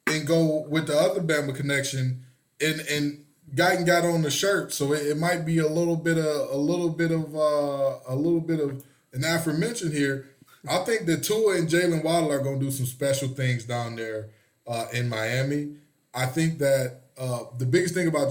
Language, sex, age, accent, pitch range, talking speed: English, male, 20-39, American, 130-150 Hz, 205 wpm